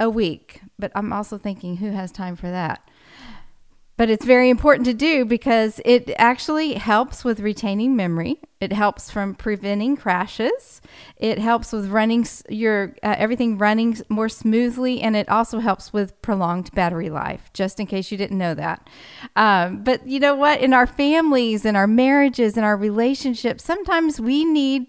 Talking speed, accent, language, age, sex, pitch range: 170 wpm, American, English, 40-59, female, 195-245 Hz